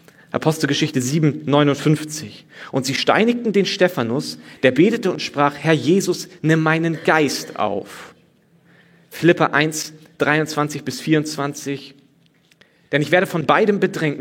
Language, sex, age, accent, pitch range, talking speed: German, male, 40-59, German, 145-180 Hz, 125 wpm